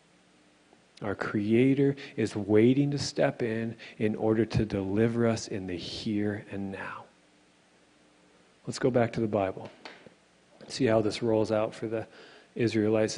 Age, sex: 40-59, male